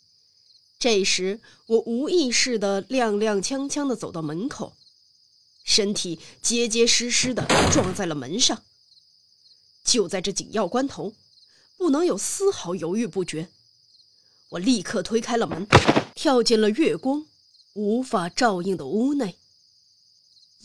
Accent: native